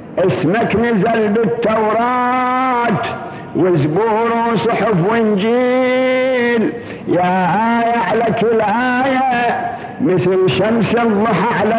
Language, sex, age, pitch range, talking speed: Arabic, male, 50-69, 150-235 Hz, 70 wpm